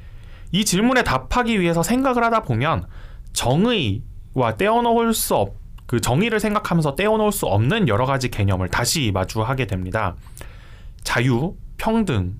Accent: native